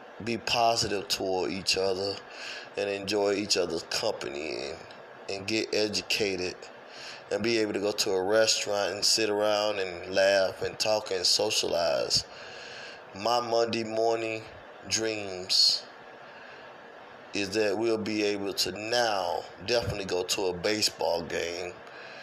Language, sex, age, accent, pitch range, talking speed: English, male, 20-39, American, 100-110 Hz, 130 wpm